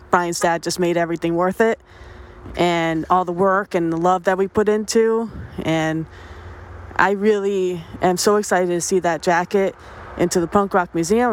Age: 20-39